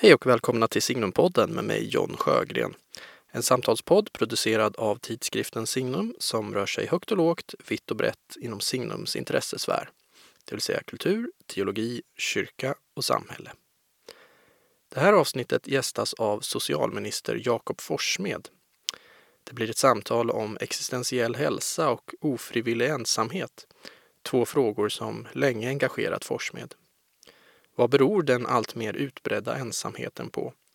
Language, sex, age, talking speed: Swedish, male, 20-39, 130 wpm